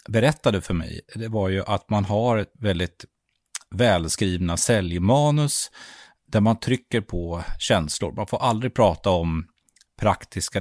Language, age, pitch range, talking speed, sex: Swedish, 30-49, 85-105 Hz, 135 wpm, male